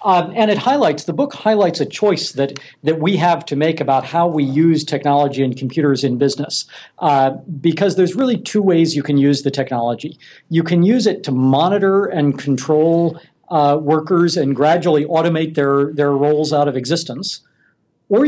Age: 50-69